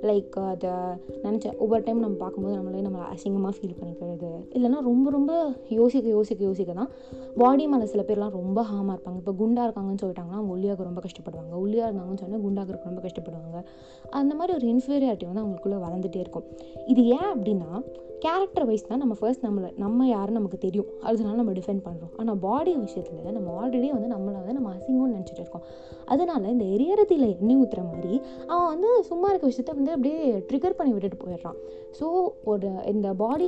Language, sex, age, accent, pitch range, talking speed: Tamil, female, 20-39, native, 185-260 Hz, 175 wpm